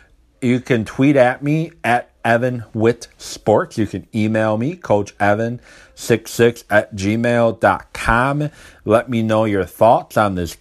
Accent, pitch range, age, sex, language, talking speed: American, 100-115 Hz, 30-49, male, English, 130 wpm